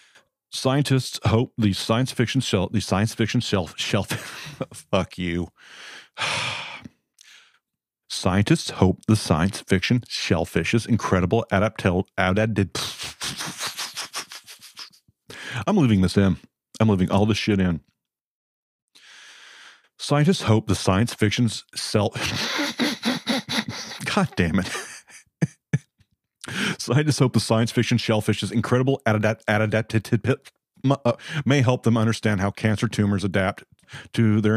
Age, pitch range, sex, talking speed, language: 40-59, 95-120 Hz, male, 120 wpm, English